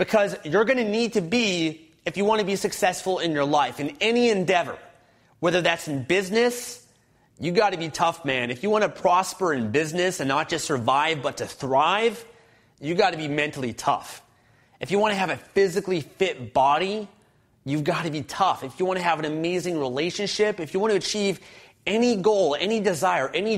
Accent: American